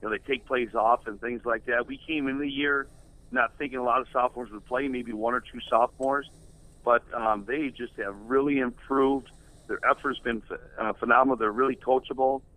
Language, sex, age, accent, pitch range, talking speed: English, male, 50-69, American, 115-135 Hz, 210 wpm